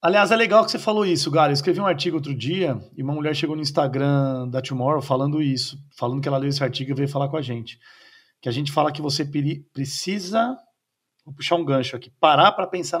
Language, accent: Portuguese, Brazilian